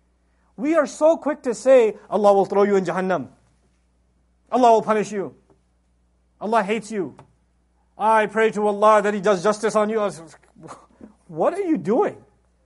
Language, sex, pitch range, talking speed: English, male, 180-255 Hz, 155 wpm